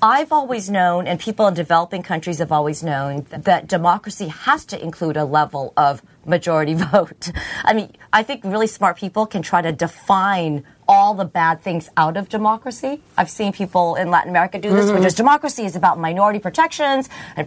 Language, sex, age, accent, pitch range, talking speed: English, female, 40-59, American, 165-230 Hz, 190 wpm